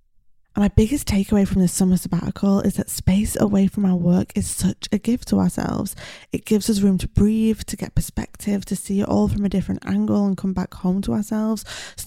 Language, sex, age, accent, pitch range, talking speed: English, female, 20-39, British, 175-200 Hz, 225 wpm